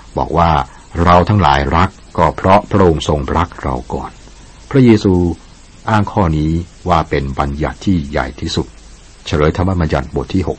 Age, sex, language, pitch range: 60-79, male, Thai, 70-90 Hz